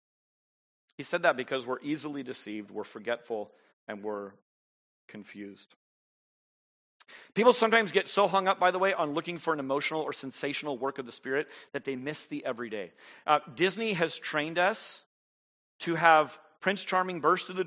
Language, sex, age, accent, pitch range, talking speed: English, male, 40-59, American, 145-225 Hz, 165 wpm